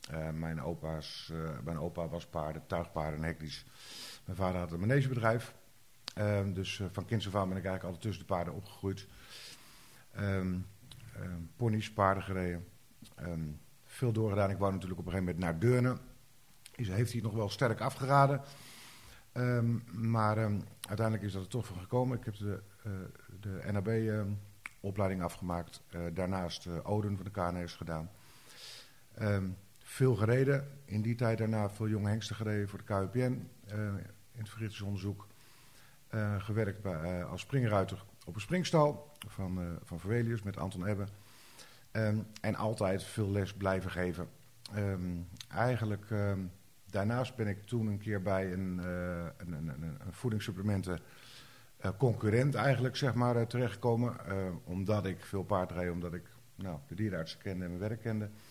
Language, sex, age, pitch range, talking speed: Dutch, male, 50-69, 95-120 Hz, 165 wpm